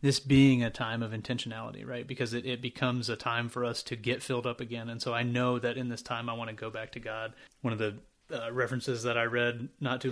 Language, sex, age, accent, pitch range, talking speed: English, male, 30-49, American, 115-130 Hz, 265 wpm